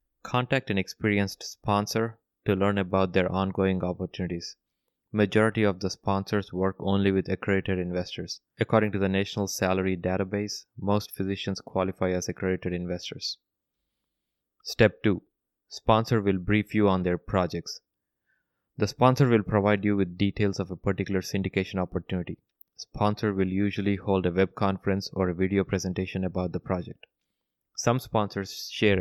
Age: 20-39